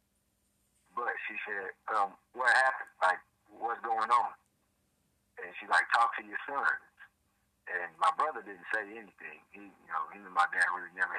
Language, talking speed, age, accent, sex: English, 170 wpm, 40-59, American, male